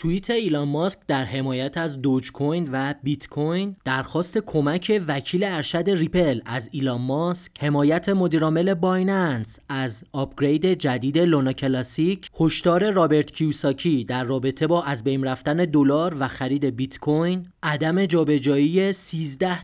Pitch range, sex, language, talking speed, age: 140-180 Hz, male, Persian, 130 wpm, 30-49